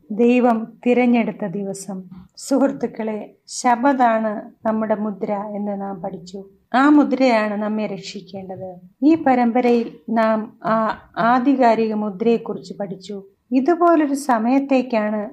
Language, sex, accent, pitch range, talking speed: Malayalam, female, native, 205-255 Hz, 90 wpm